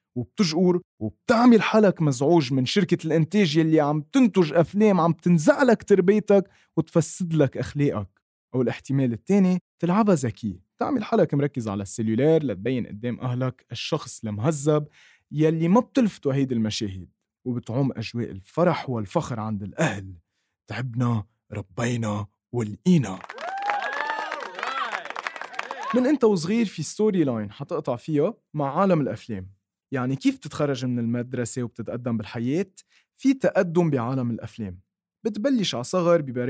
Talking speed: 115 wpm